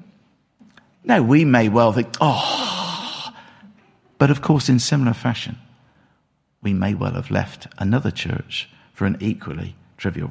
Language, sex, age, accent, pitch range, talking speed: English, male, 50-69, British, 125-185 Hz, 135 wpm